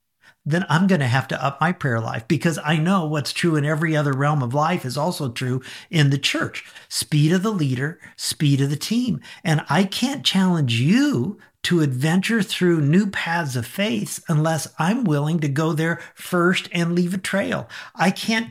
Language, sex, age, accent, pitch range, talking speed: English, male, 50-69, American, 140-195 Hz, 195 wpm